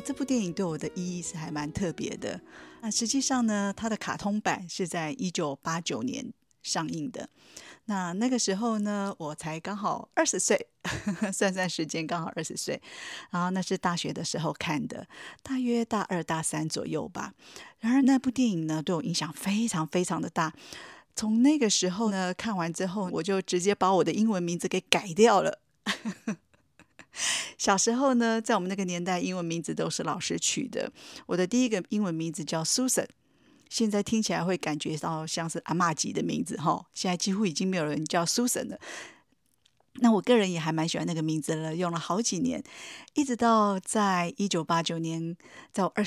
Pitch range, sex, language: 170-230 Hz, female, Chinese